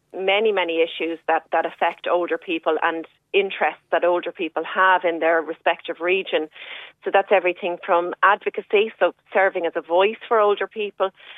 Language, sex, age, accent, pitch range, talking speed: English, female, 30-49, Irish, 170-210 Hz, 165 wpm